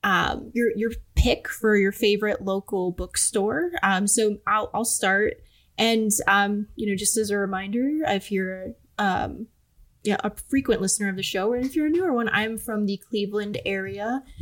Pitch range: 195-230 Hz